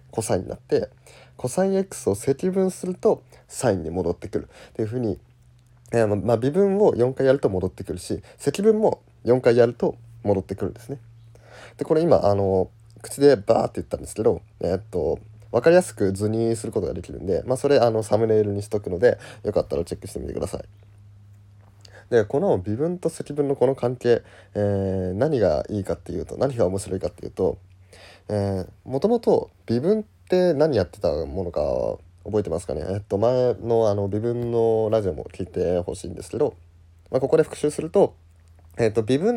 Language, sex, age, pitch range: Japanese, male, 20-39, 95-130 Hz